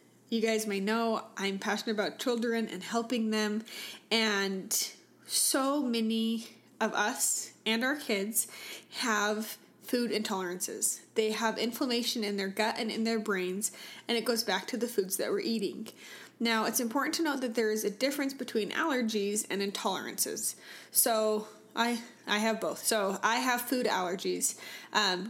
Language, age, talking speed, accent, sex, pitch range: English, 20-39, 160 wpm, American, female, 210-235 Hz